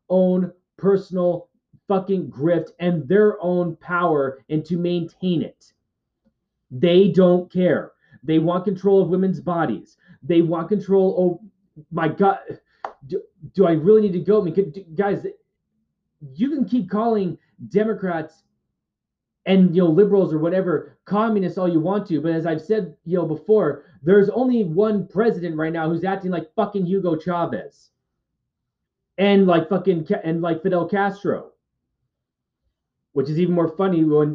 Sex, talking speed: male, 145 wpm